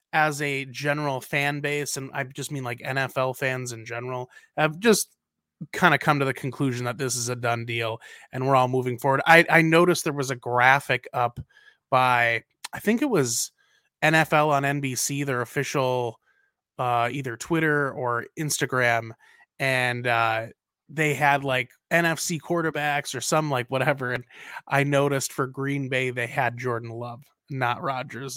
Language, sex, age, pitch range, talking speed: English, male, 20-39, 125-155 Hz, 165 wpm